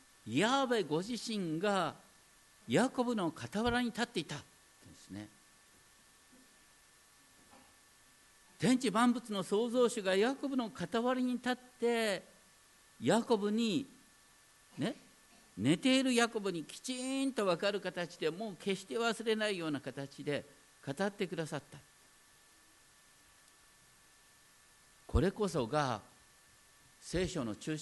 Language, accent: Japanese, native